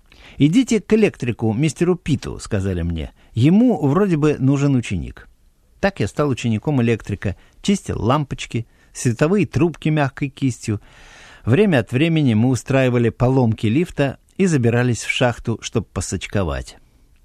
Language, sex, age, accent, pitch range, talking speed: Russian, male, 50-69, native, 100-145 Hz, 130 wpm